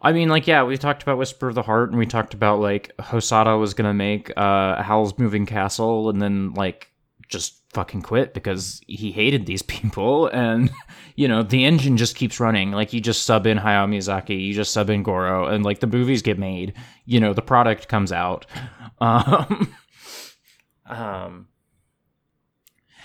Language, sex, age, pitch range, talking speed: English, male, 20-39, 105-130 Hz, 180 wpm